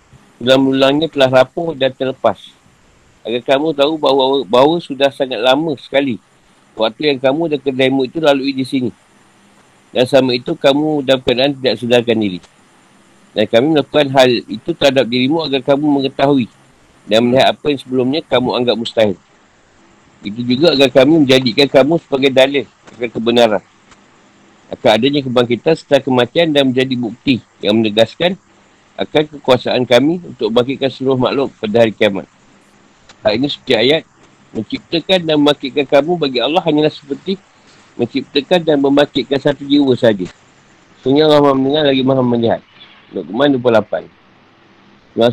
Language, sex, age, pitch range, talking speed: Malay, male, 50-69, 120-145 Hz, 145 wpm